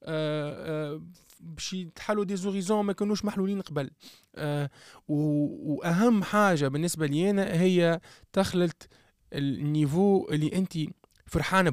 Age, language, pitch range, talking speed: 20-39, Arabic, 140-185 Hz, 100 wpm